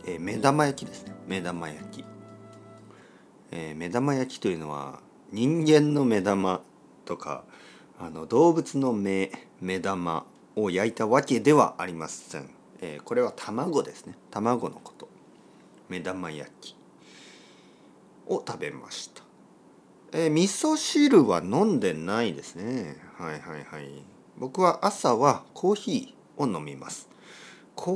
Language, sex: Japanese, male